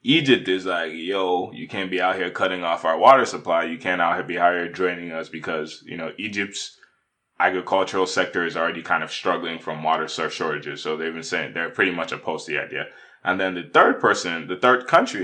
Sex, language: male, English